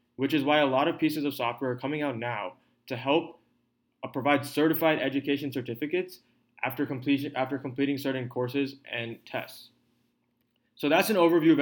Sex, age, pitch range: male, 20-39, 120-150 Hz